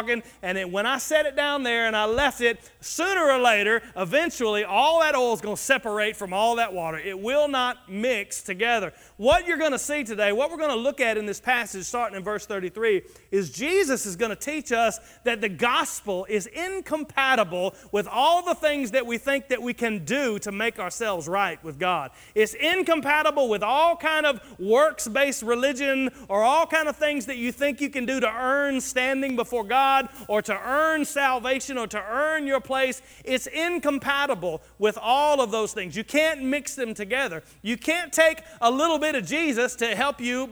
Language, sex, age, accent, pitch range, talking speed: English, male, 40-59, American, 225-290 Hz, 200 wpm